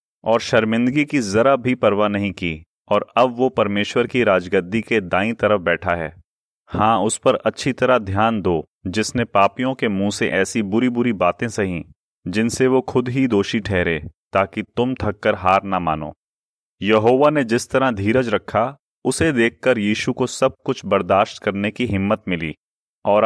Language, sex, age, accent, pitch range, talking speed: Hindi, male, 30-49, native, 100-130 Hz, 170 wpm